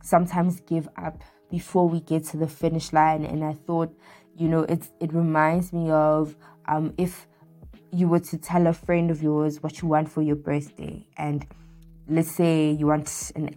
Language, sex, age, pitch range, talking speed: English, female, 20-39, 150-175 Hz, 185 wpm